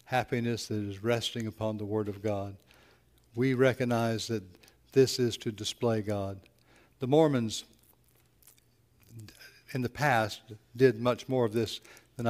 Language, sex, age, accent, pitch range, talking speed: English, male, 60-79, American, 110-130 Hz, 135 wpm